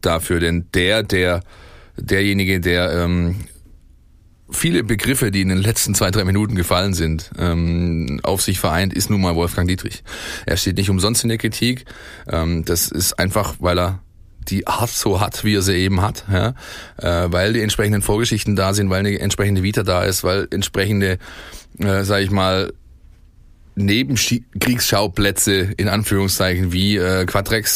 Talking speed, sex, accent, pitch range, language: 165 wpm, male, German, 90-110 Hz, German